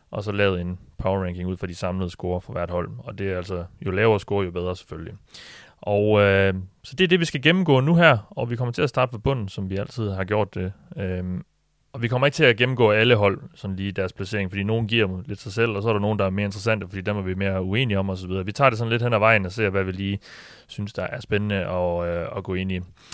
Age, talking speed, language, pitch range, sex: 30-49, 285 wpm, Danish, 95-120 Hz, male